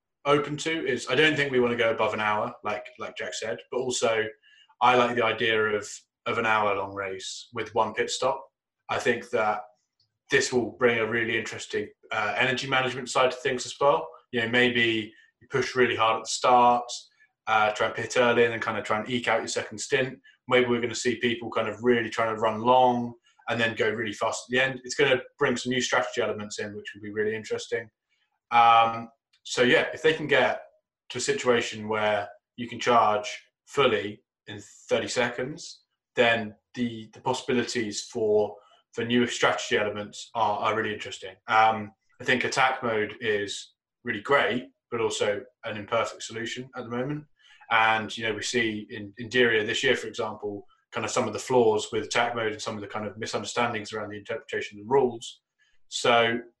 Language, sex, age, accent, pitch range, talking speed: English, male, 20-39, British, 110-125 Hz, 205 wpm